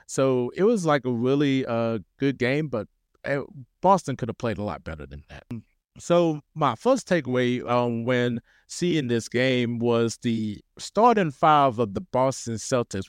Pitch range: 120-175 Hz